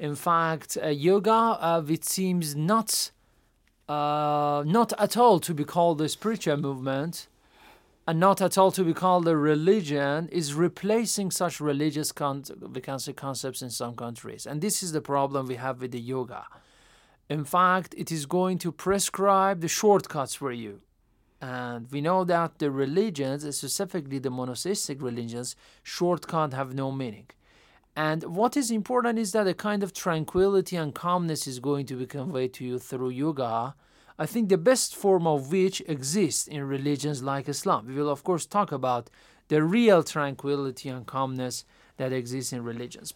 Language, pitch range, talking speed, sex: Persian, 135-185 Hz, 165 wpm, male